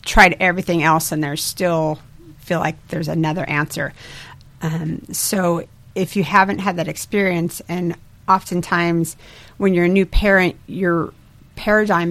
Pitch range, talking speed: 150-175 Hz, 140 wpm